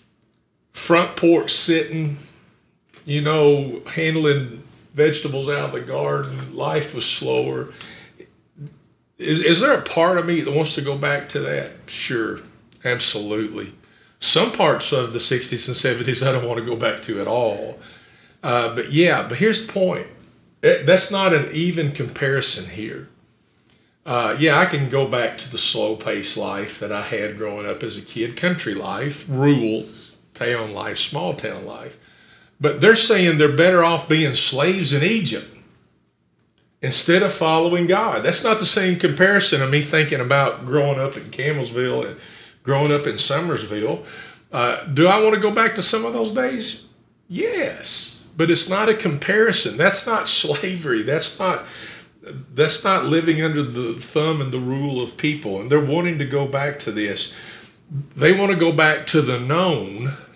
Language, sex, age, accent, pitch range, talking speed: English, male, 50-69, American, 130-175 Hz, 165 wpm